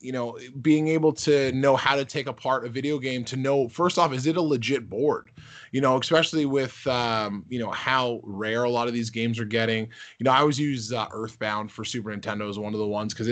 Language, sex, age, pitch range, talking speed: English, male, 20-39, 115-145 Hz, 245 wpm